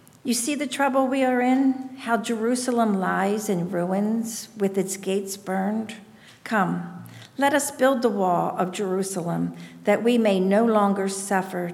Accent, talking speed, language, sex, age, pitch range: American, 155 wpm, English, female, 50-69, 180-220 Hz